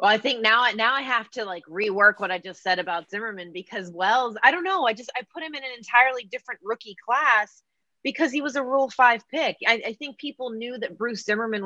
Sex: female